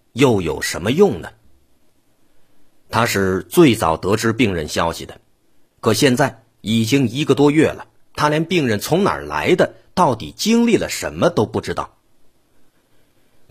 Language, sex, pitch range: Chinese, male, 95-135 Hz